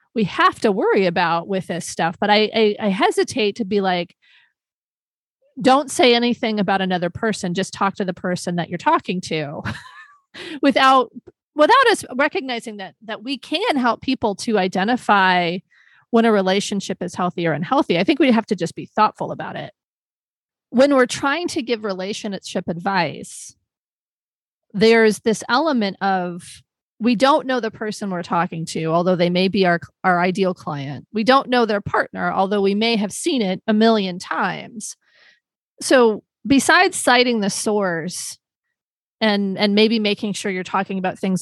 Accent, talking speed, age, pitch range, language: American, 170 wpm, 30-49, 185-245 Hz, English